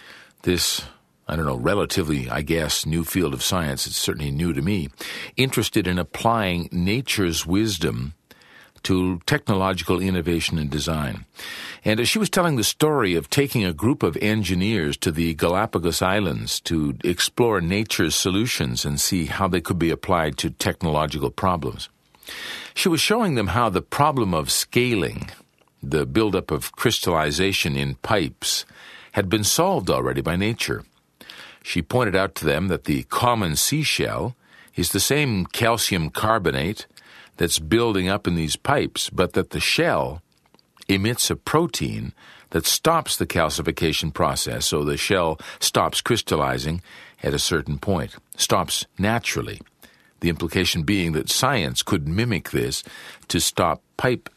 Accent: American